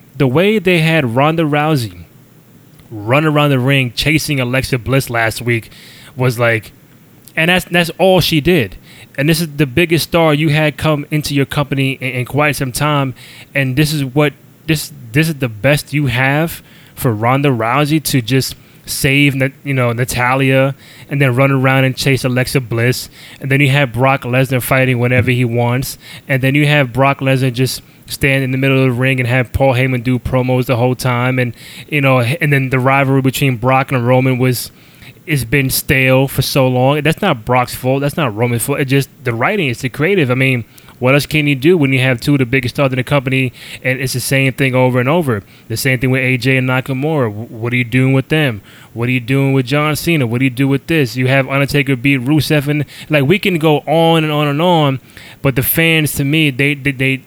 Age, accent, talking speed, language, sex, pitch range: 20-39, American, 220 wpm, English, male, 130-150 Hz